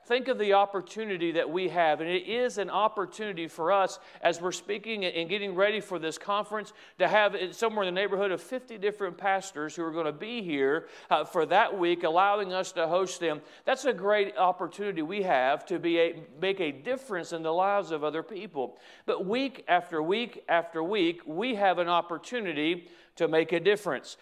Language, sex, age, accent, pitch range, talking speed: English, male, 40-59, American, 170-210 Hz, 200 wpm